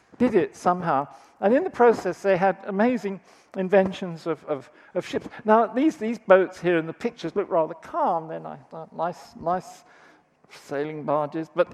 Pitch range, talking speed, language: 165-210 Hz, 170 wpm, English